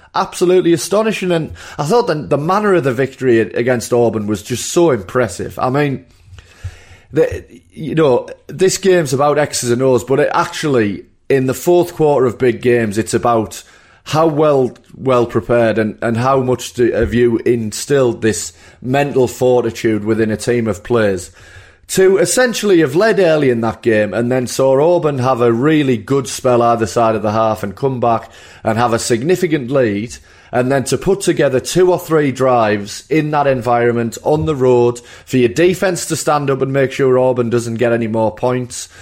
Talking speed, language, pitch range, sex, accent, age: 185 wpm, English, 115-145 Hz, male, British, 30-49